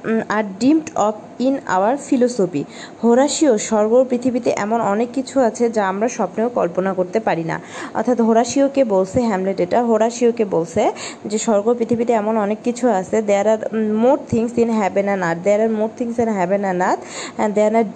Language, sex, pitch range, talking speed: Bengali, female, 200-240 Hz, 155 wpm